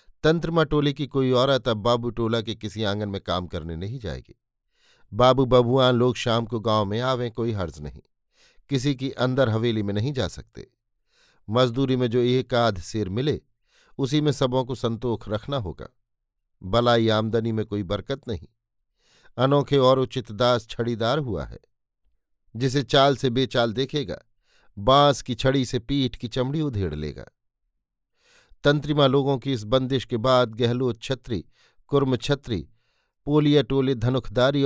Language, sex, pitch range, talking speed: Hindi, male, 115-135 Hz, 155 wpm